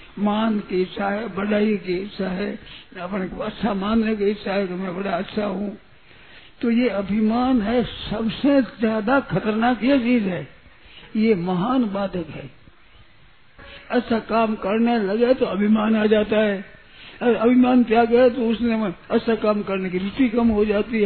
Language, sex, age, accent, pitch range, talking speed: Hindi, male, 60-79, native, 195-230 Hz, 155 wpm